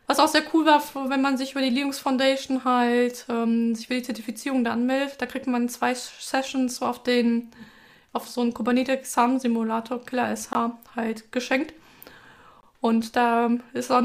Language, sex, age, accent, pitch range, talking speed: German, female, 20-39, German, 235-265 Hz, 170 wpm